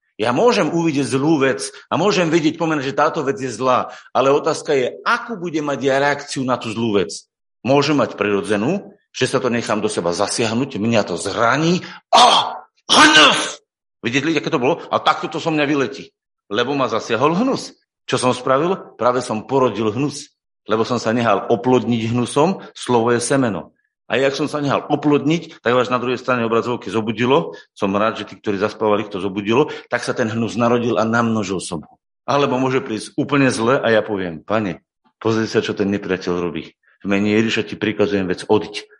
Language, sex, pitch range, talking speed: Slovak, male, 110-145 Hz, 190 wpm